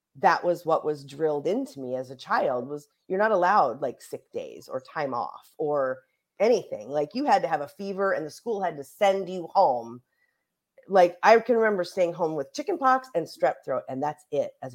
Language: English